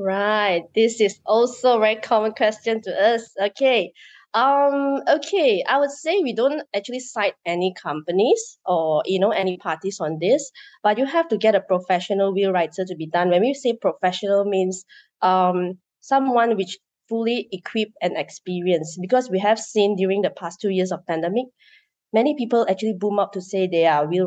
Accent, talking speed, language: Malaysian, 185 wpm, English